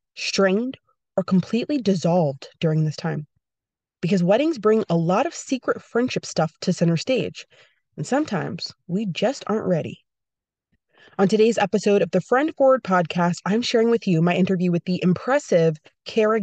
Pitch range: 170-225 Hz